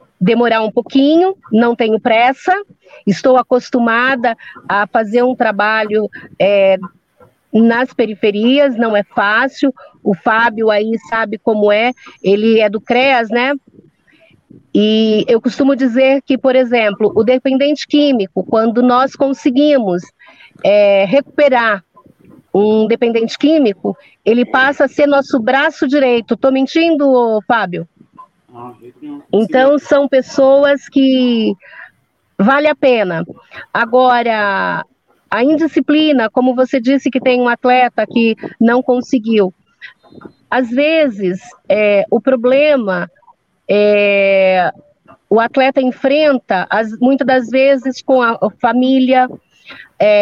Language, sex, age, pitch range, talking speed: Portuguese, female, 40-59, 220-275 Hz, 105 wpm